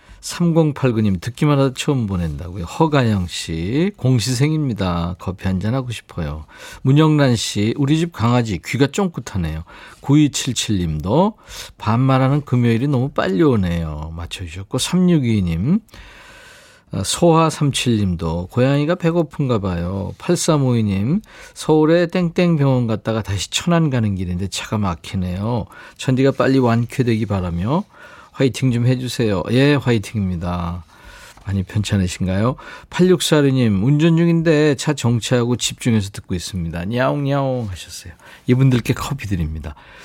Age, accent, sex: 40-59, native, male